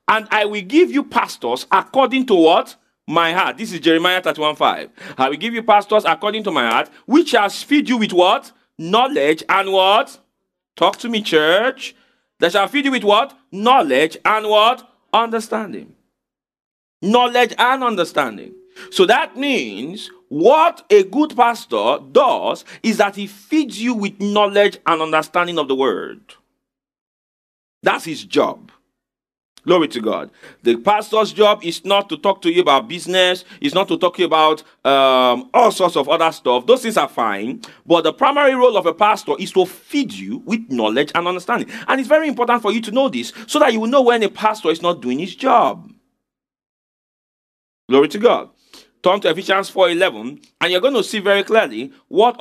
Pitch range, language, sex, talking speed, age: 175-250 Hz, English, male, 180 wpm, 40-59